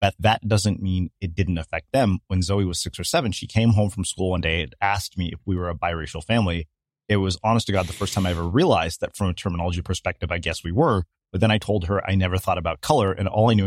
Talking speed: 280 wpm